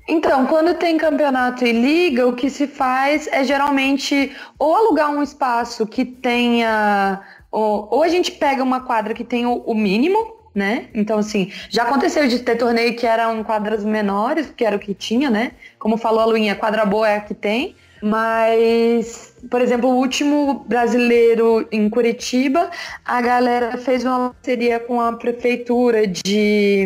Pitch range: 225-275 Hz